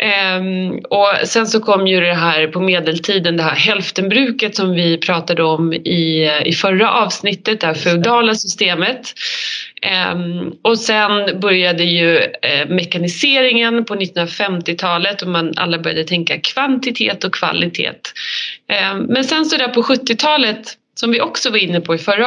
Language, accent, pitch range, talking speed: Swedish, native, 175-230 Hz, 155 wpm